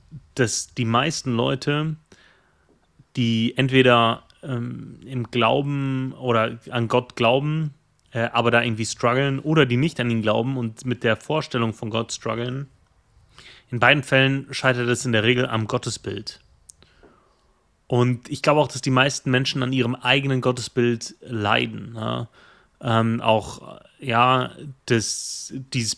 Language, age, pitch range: German, 30-49, 115-130 Hz